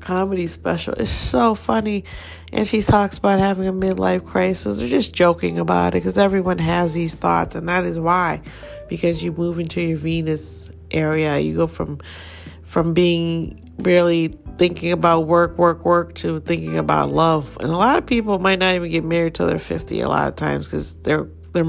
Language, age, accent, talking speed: English, 40-59, American, 190 wpm